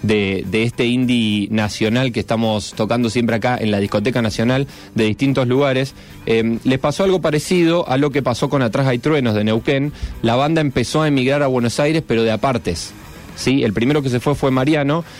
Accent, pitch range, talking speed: Argentinian, 115-145 Hz, 200 wpm